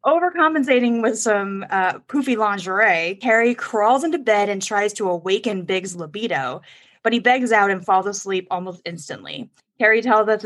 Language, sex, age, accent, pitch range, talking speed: English, female, 20-39, American, 185-240 Hz, 165 wpm